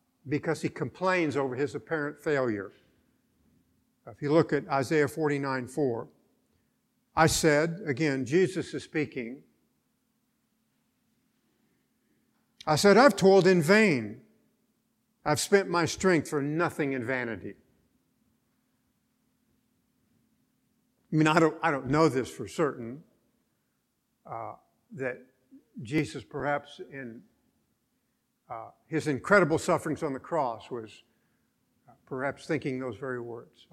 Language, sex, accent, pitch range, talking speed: English, male, American, 135-180 Hz, 110 wpm